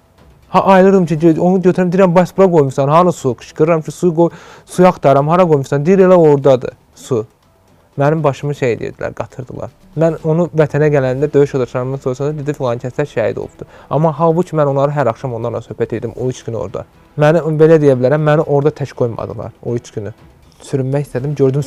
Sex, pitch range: male, 125-160 Hz